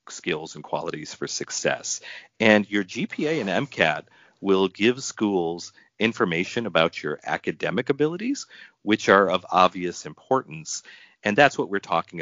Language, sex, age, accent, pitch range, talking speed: English, male, 40-59, American, 80-130 Hz, 135 wpm